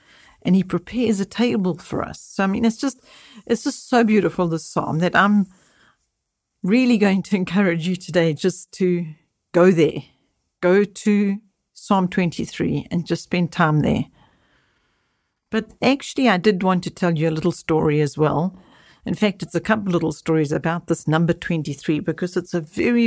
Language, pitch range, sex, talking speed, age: English, 160-200 Hz, female, 175 wpm, 50-69